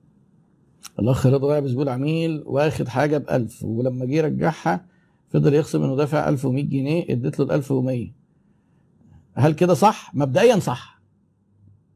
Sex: male